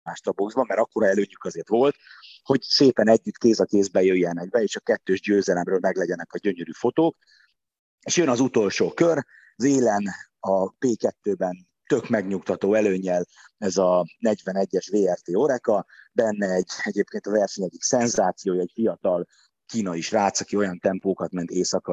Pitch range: 95-115 Hz